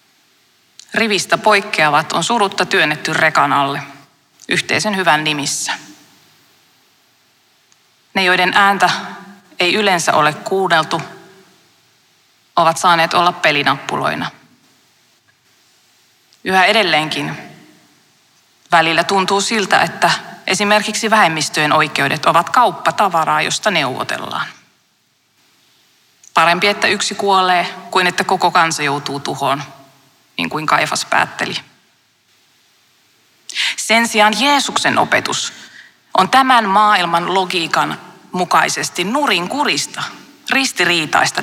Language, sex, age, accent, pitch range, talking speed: Finnish, female, 30-49, native, 165-215 Hz, 85 wpm